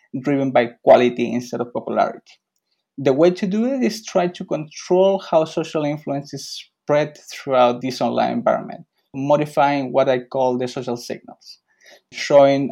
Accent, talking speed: Spanish, 150 wpm